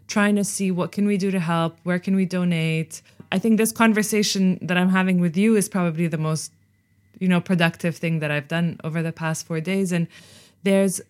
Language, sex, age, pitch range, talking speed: English, female, 20-39, 160-190 Hz, 215 wpm